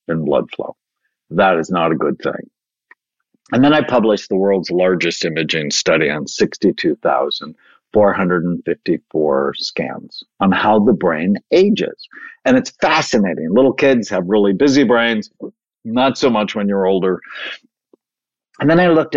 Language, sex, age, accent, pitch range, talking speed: English, male, 50-69, American, 90-135 Hz, 140 wpm